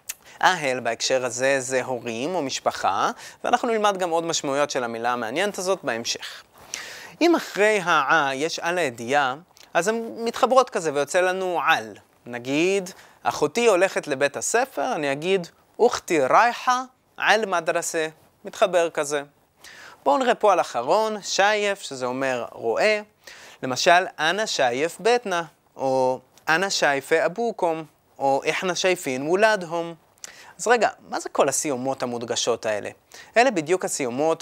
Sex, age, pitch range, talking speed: male, 20-39, 135-195 Hz, 130 wpm